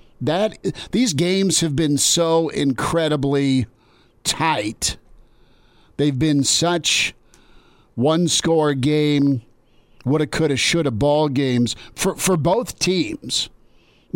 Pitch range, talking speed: 130-155 Hz, 90 wpm